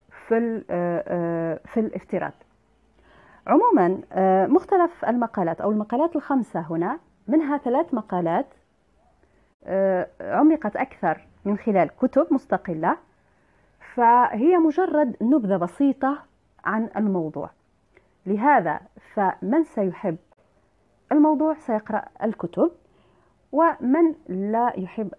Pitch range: 180-250 Hz